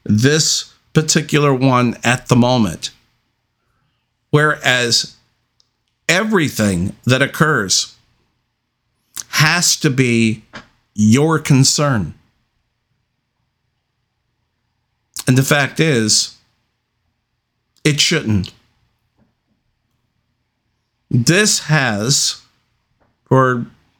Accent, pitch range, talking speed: American, 115-135 Hz, 60 wpm